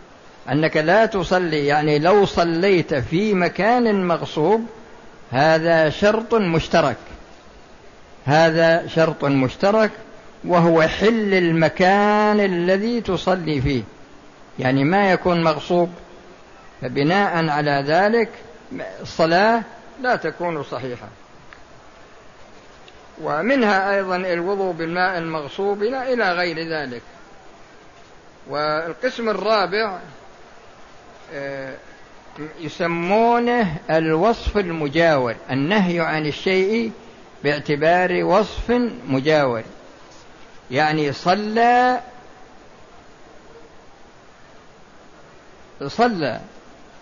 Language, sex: Arabic, male